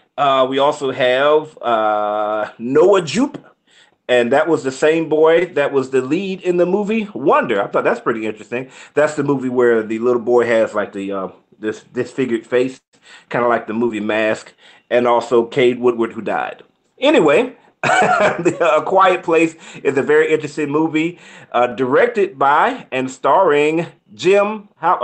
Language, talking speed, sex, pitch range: English, 165 wpm, male, 120-155 Hz